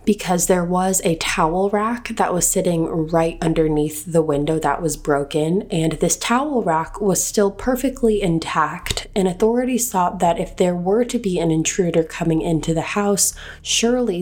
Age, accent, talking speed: 20-39, American, 170 wpm